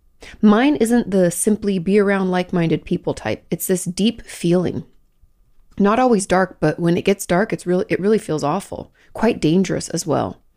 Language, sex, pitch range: English, female, 170-205 Hz